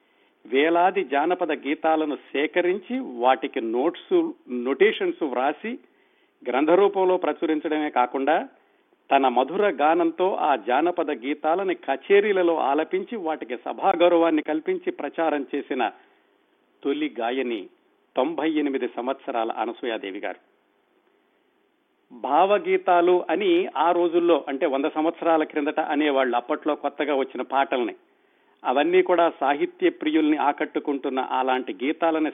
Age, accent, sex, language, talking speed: 50-69, native, male, Telugu, 95 wpm